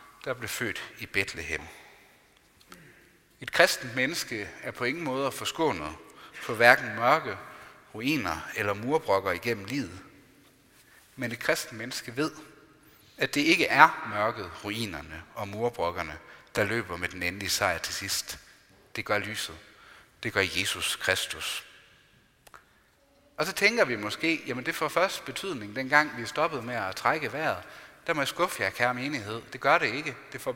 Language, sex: Danish, male